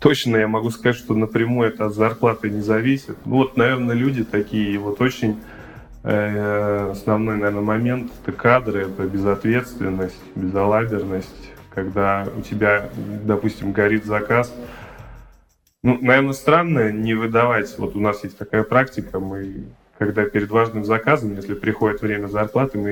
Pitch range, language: 105-120 Hz, Russian